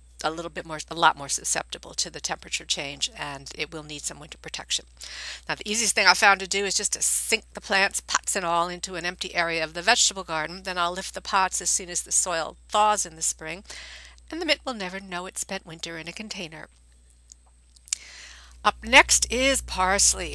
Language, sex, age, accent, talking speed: English, female, 50-69, American, 220 wpm